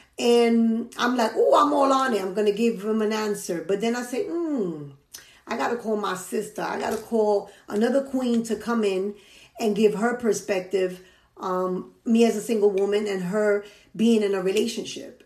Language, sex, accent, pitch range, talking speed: English, female, American, 205-255 Hz, 200 wpm